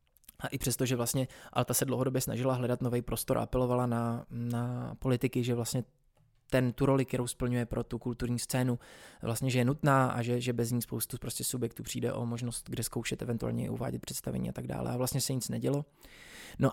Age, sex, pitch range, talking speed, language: 20-39, male, 125-140 Hz, 210 wpm, Czech